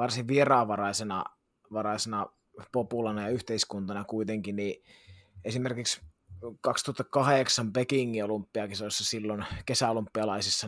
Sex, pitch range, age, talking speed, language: male, 105-125 Hz, 20-39, 80 wpm, Finnish